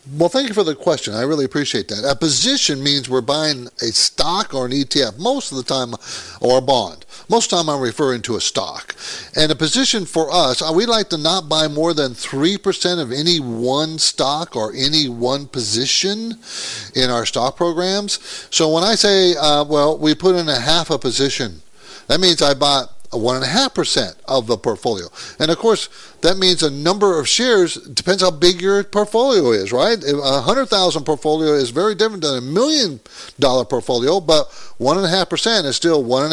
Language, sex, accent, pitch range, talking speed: English, male, American, 135-185 Hz, 205 wpm